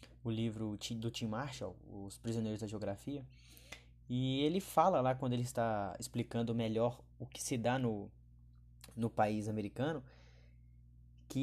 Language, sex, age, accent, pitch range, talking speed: Portuguese, male, 10-29, Brazilian, 105-145 Hz, 140 wpm